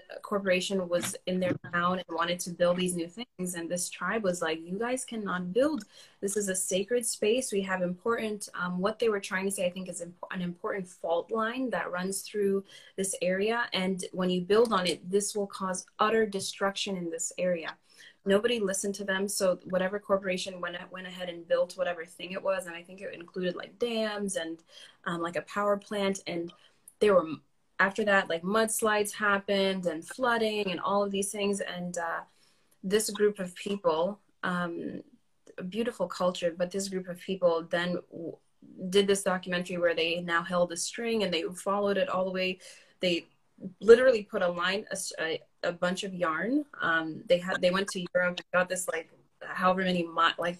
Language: English